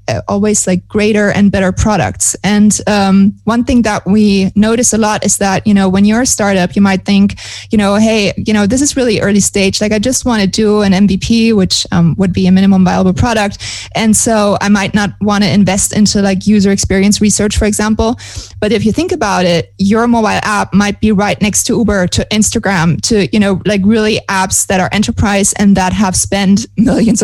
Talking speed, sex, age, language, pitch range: 215 wpm, female, 20-39, English, 185-215 Hz